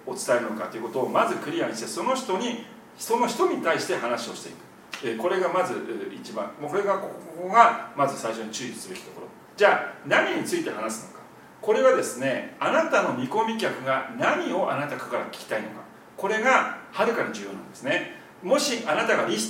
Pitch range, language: 170-255 Hz, Japanese